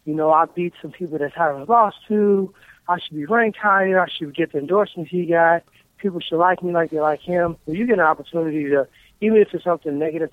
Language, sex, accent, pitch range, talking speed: English, male, American, 145-175 Hz, 245 wpm